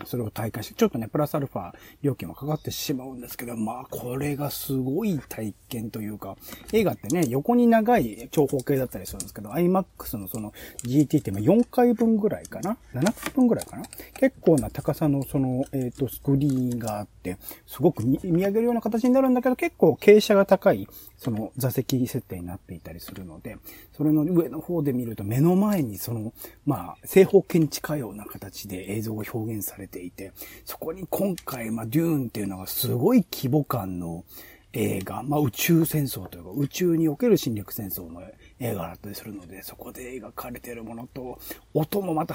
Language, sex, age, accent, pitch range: Japanese, male, 40-59, native, 110-160 Hz